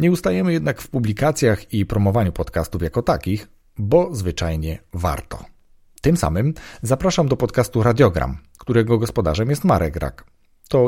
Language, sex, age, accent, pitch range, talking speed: Polish, male, 40-59, native, 85-120 Hz, 140 wpm